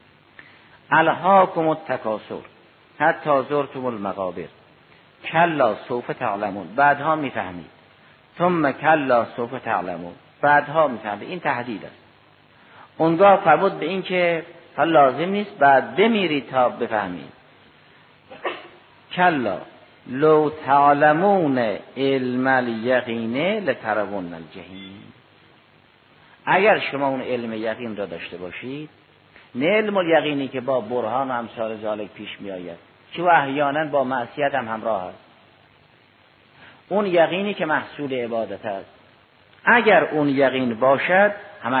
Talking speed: 105 wpm